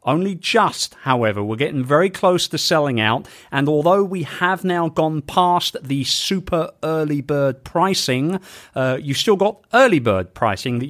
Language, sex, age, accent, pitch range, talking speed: English, male, 40-59, British, 130-180 Hz, 165 wpm